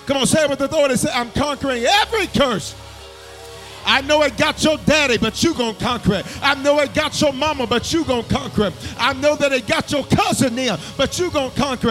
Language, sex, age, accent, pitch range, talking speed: English, male, 40-59, American, 150-235 Hz, 235 wpm